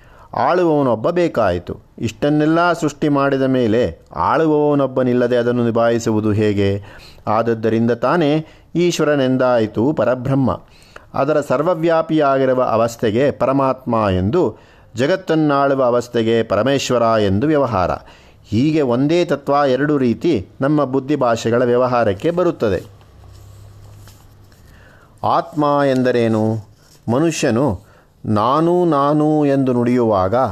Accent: native